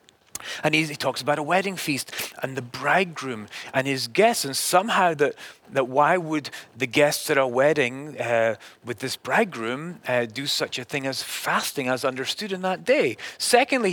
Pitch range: 140-195 Hz